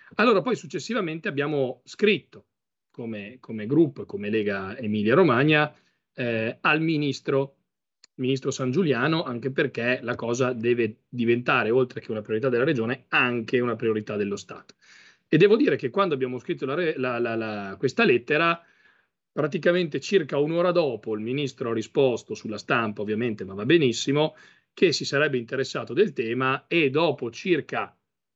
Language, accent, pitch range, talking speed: Italian, native, 115-155 Hz, 140 wpm